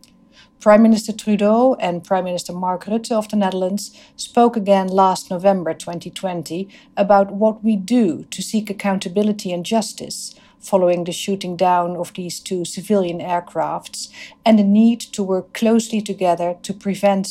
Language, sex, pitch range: English, female, 180-220 Hz